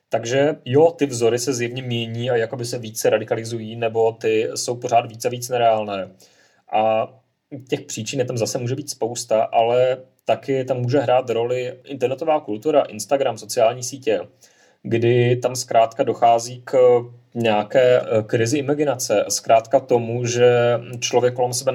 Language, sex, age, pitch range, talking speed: Czech, male, 30-49, 110-125 Hz, 150 wpm